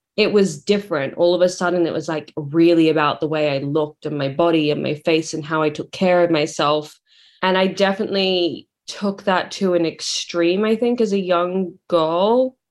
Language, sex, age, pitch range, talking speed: English, female, 20-39, 170-200 Hz, 205 wpm